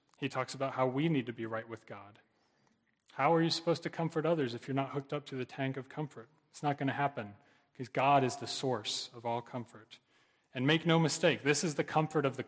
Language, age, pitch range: English, 30-49, 130-165 Hz